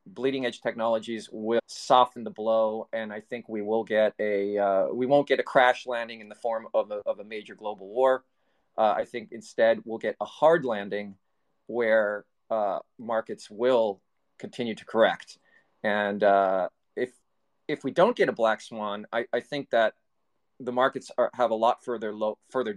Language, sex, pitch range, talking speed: English, male, 105-125 Hz, 185 wpm